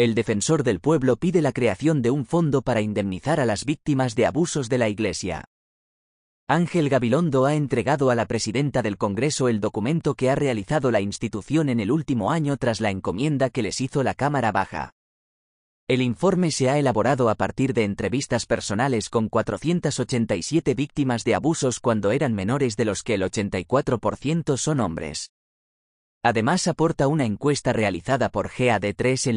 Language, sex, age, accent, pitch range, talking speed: Spanish, male, 30-49, Spanish, 110-145 Hz, 170 wpm